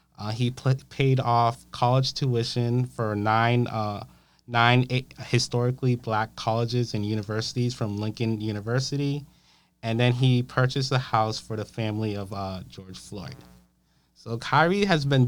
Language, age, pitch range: English, 20-39, 105-130 Hz